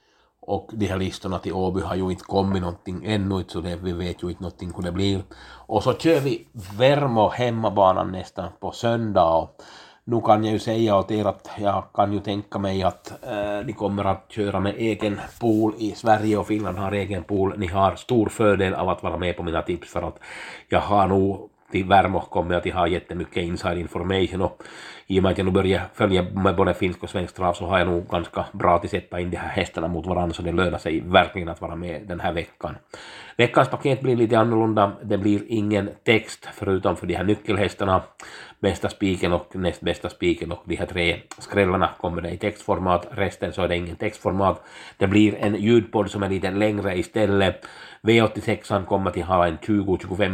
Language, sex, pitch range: Swedish, male, 90-105 Hz